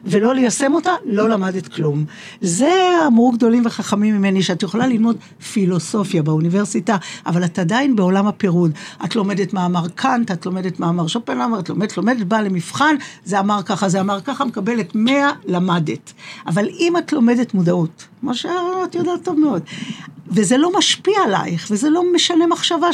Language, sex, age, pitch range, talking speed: Hebrew, female, 60-79, 195-300 Hz, 160 wpm